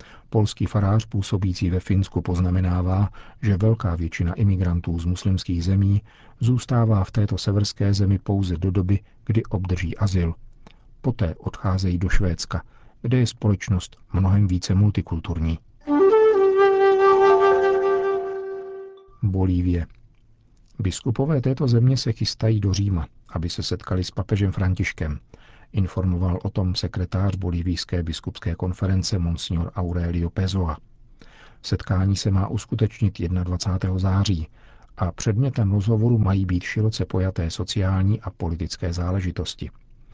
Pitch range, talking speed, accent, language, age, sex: 90-110 Hz, 110 wpm, native, Czech, 50-69, male